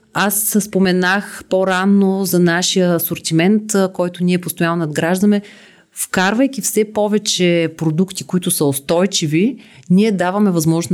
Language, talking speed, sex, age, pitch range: Bulgarian, 110 wpm, female, 30-49, 160-195 Hz